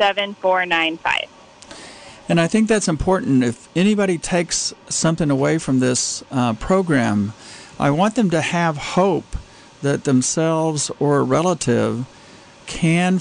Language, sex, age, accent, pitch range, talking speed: English, male, 50-69, American, 125-160 Hz, 120 wpm